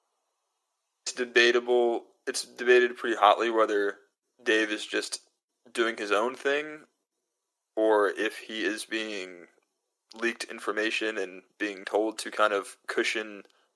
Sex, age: male, 20-39